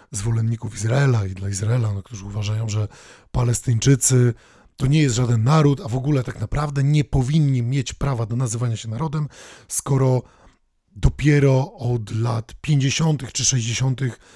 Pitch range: 115-150 Hz